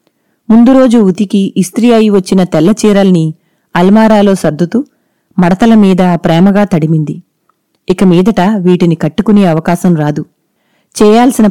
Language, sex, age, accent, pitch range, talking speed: Telugu, female, 30-49, native, 170-220 Hz, 100 wpm